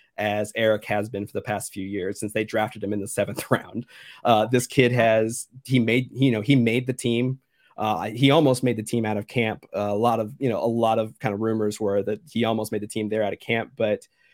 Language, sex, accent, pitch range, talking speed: English, male, American, 105-125 Hz, 260 wpm